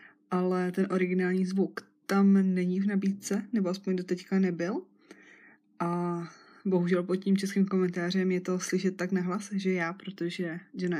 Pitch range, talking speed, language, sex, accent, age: 175-190 Hz, 145 wpm, Czech, female, native, 20-39